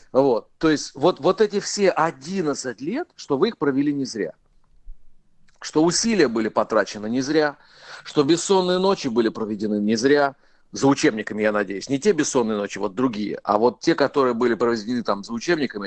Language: Ukrainian